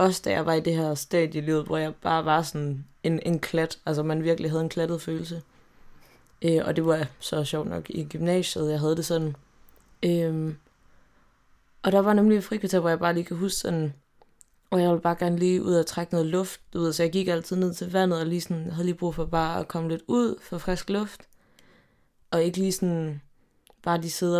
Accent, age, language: native, 20-39, Danish